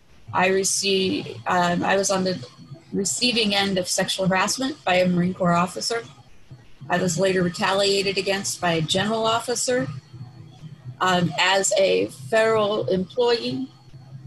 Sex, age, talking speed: female, 30-49, 130 wpm